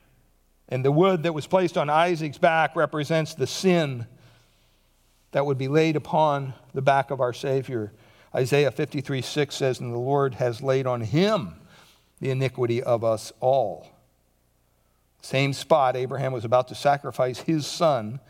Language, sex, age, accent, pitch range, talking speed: English, male, 60-79, American, 120-155 Hz, 155 wpm